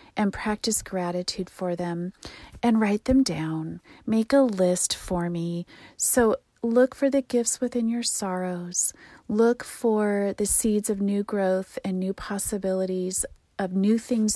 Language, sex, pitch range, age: English, female, 180-220 Hz, 40-59